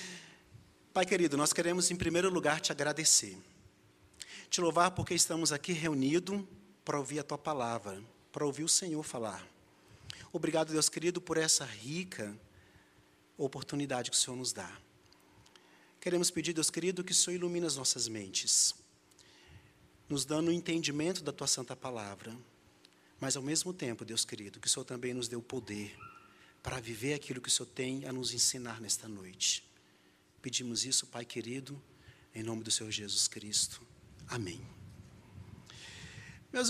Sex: male